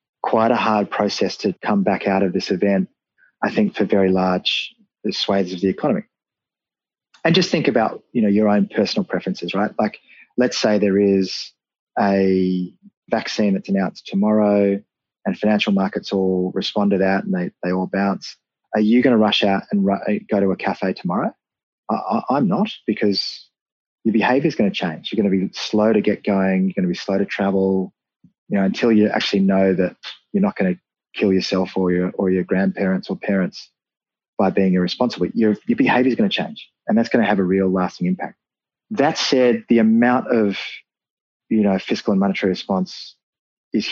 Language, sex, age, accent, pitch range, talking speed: English, male, 20-39, Australian, 95-120 Hz, 195 wpm